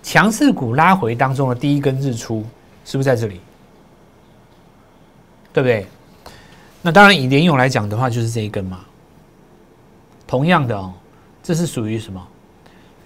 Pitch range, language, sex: 105-155 Hz, Chinese, male